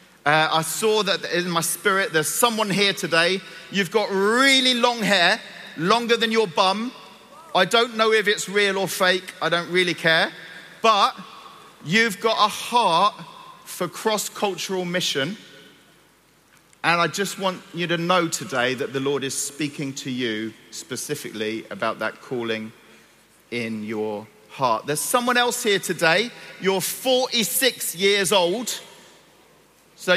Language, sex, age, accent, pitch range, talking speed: English, male, 40-59, British, 155-210 Hz, 145 wpm